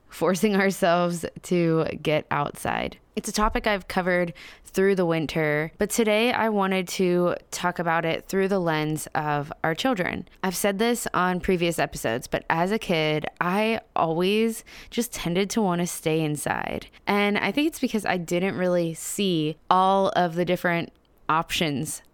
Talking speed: 165 wpm